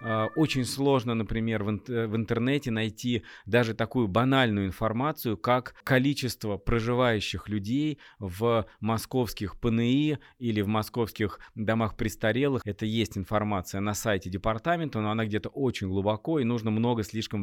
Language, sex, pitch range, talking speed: Russian, male, 105-130 Hz, 125 wpm